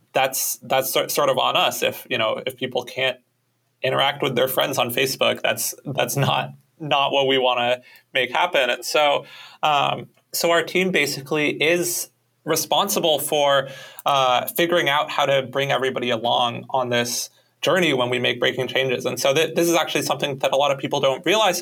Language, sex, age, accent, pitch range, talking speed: English, male, 20-39, American, 130-145 Hz, 190 wpm